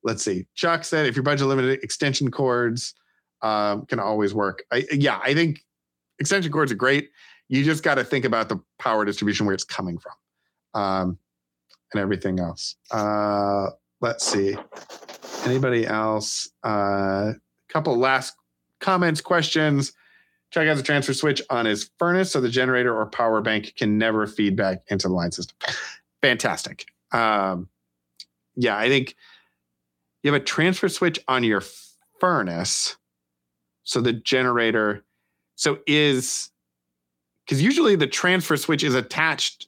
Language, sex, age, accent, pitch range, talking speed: English, male, 40-59, American, 95-135 Hz, 145 wpm